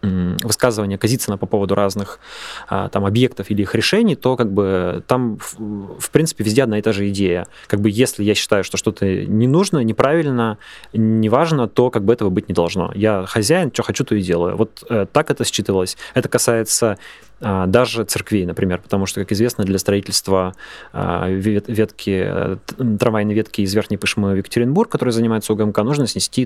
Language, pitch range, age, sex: Russian, 100-120 Hz, 20-39, male